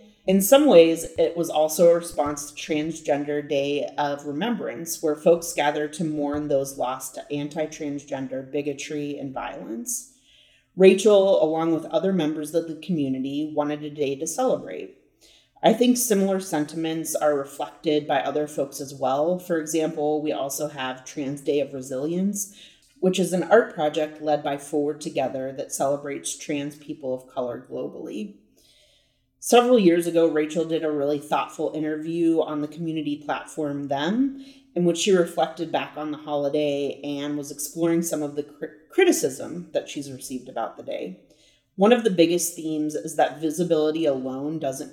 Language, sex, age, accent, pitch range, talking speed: English, female, 30-49, American, 145-170 Hz, 160 wpm